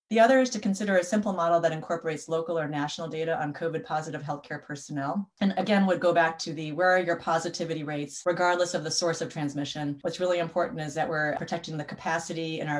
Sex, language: female, English